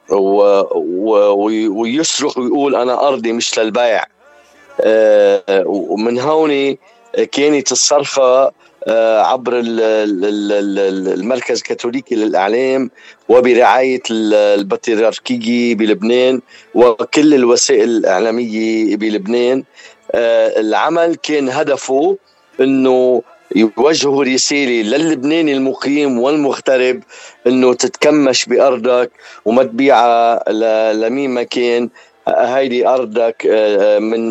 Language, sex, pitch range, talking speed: Arabic, male, 115-140 Hz, 70 wpm